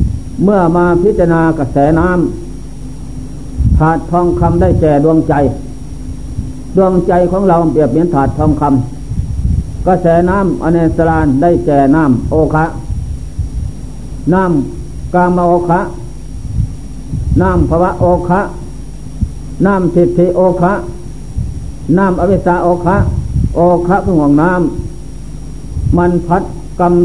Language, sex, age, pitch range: Thai, male, 60-79, 130-175 Hz